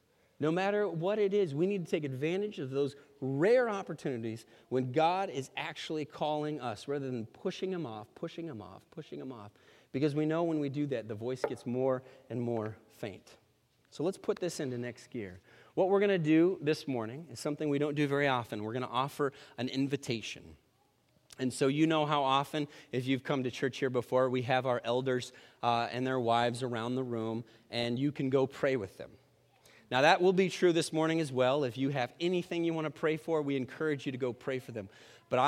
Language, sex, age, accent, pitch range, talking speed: English, male, 30-49, American, 120-155 Hz, 220 wpm